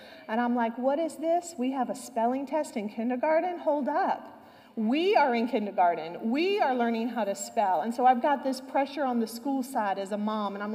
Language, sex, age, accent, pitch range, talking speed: English, female, 40-59, American, 230-295 Hz, 225 wpm